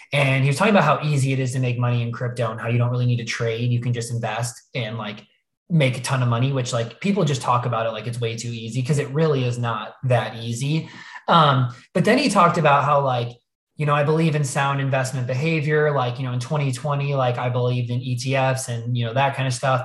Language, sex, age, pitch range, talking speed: English, male, 20-39, 120-140 Hz, 255 wpm